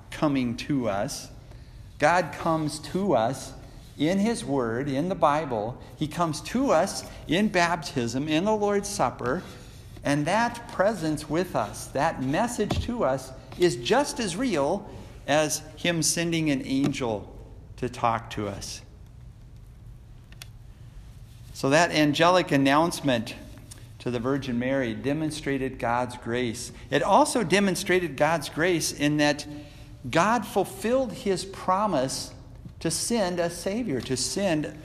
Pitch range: 120-170 Hz